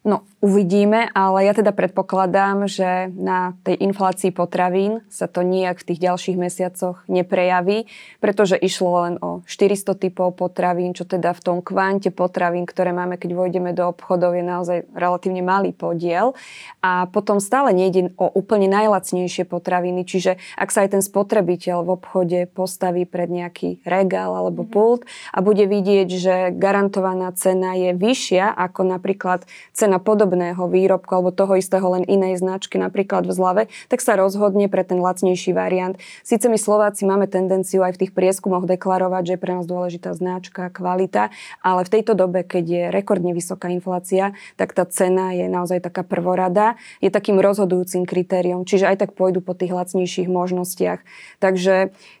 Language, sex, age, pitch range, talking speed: Slovak, female, 20-39, 180-195 Hz, 160 wpm